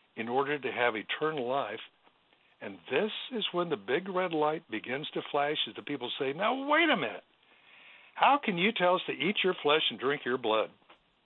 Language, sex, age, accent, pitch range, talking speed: English, male, 60-79, American, 120-160 Hz, 205 wpm